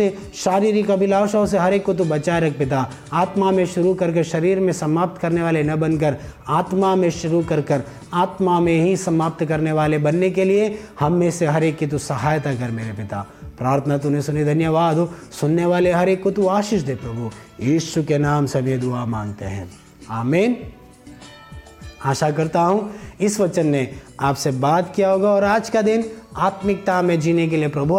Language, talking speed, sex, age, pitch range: Hindi, 160 wpm, male, 30-49, 145-195 Hz